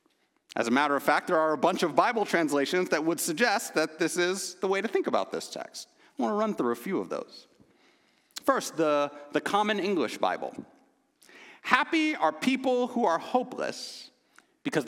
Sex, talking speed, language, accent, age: male, 190 wpm, English, American, 40-59